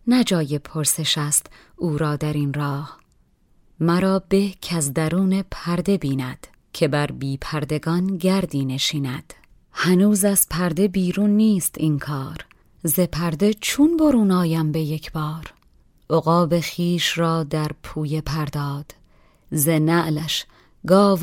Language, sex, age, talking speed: Persian, female, 30-49, 120 wpm